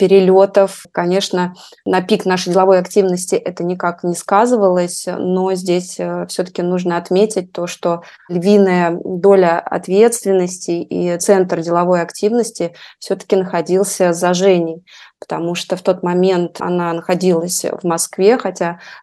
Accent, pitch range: native, 175-195 Hz